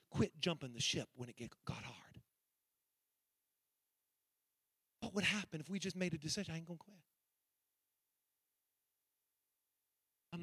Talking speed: 140 wpm